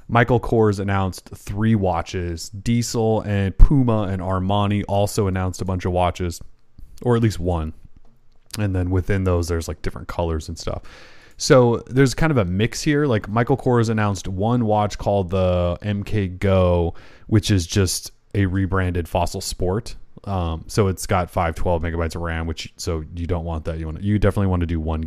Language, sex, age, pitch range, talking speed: English, male, 30-49, 90-115 Hz, 185 wpm